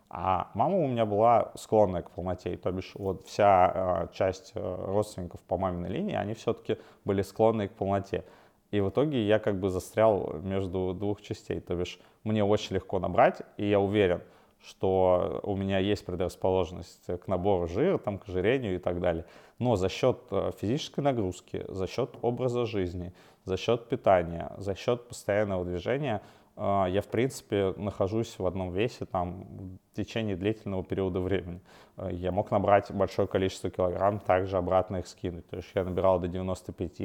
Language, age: Russian, 20-39